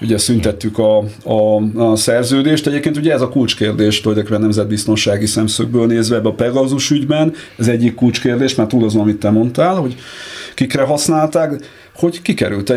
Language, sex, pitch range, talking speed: Hungarian, male, 105-130 Hz, 145 wpm